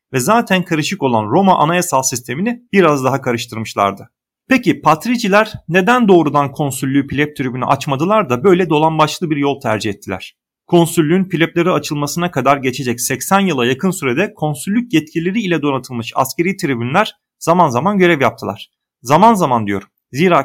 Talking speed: 145 wpm